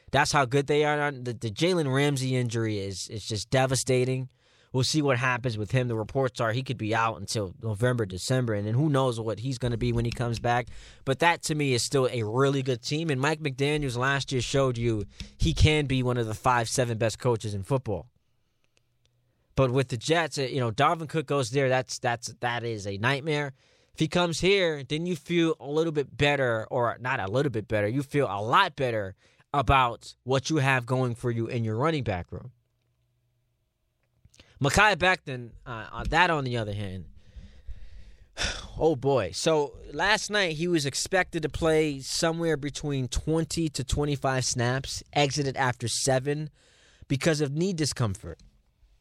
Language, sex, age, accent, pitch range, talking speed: English, male, 20-39, American, 115-145 Hz, 190 wpm